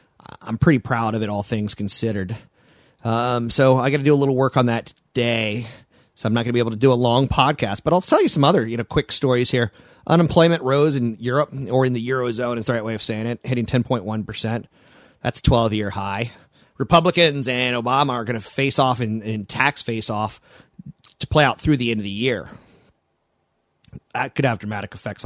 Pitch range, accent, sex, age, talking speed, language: 110-140 Hz, American, male, 30-49, 215 wpm, English